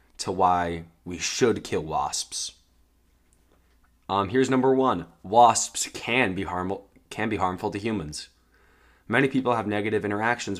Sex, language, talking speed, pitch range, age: male, English, 125 wpm, 85-120 Hz, 20-39